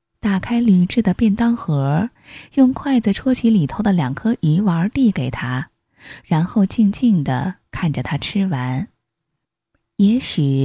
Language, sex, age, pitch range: Chinese, female, 20-39, 155-235 Hz